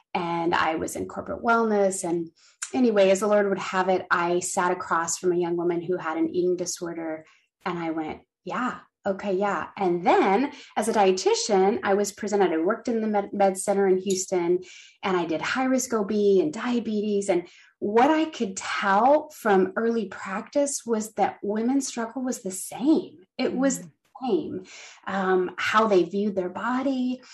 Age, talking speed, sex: 30-49, 180 wpm, female